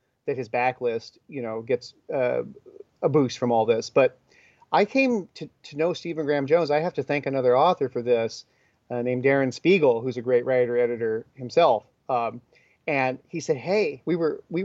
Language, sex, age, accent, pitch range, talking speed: Swedish, male, 40-59, American, 125-165 Hz, 195 wpm